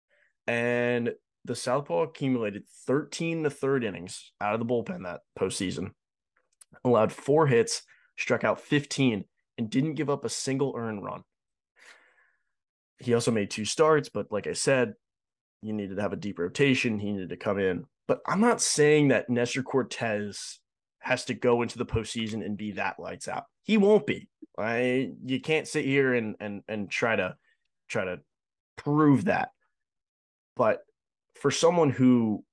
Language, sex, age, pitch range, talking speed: English, male, 20-39, 115-150 Hz, 160 wpm